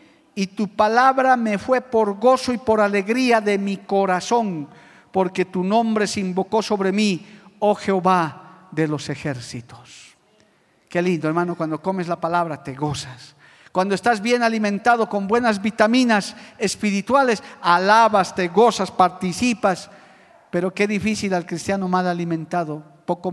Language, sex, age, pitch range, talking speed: Spanish, male, 50-69, 155-205 Hz, 140 wpm